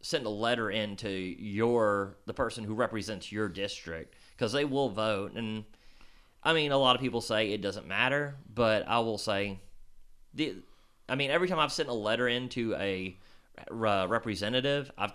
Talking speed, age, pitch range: 180 wpm, 30-49, 95-115 Hz